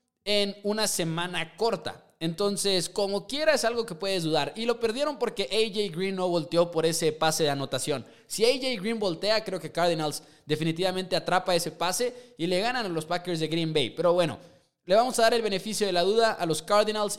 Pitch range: 155-210 Hz